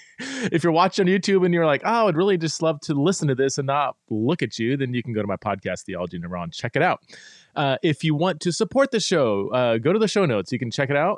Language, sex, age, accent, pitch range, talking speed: English, male, 30-49, American, 115-160 Hz, 295 wpm